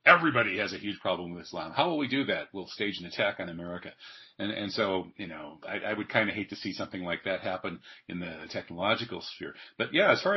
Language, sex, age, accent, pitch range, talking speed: English, male, 40-59, American, 90-110 Hz, 250 wpm